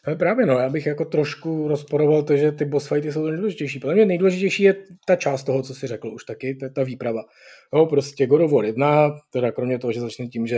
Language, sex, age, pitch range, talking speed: Czech, male, 30-49, 125-150 Hz, 245 wpm